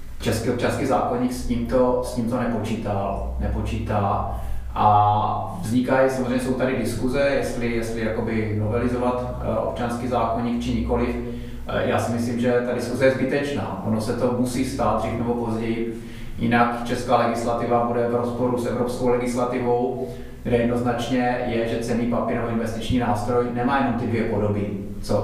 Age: 30-49